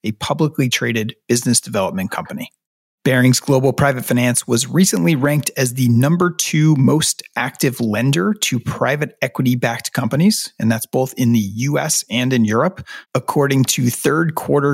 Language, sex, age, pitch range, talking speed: English, male, 30-49, 115-145 Hz, 150 wpm